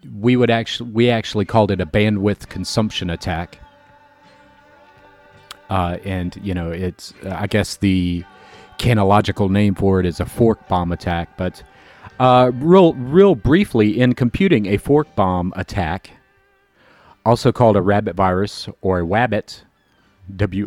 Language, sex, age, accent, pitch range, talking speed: English, male, 40-59, American, 95-120 Hz, 140 wpm